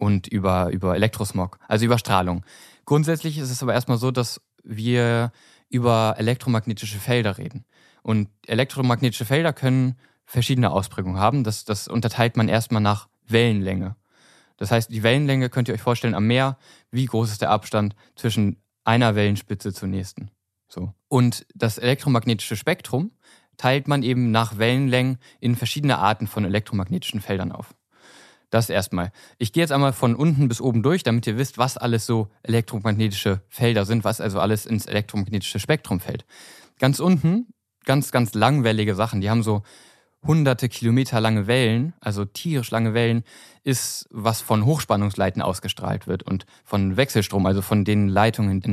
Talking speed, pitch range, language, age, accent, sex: 160 wpm, 105-125 Hz, German, 20-39, German, male